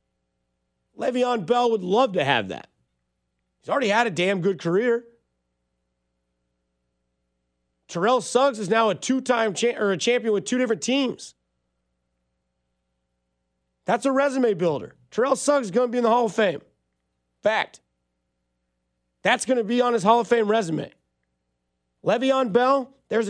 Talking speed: 145 wpm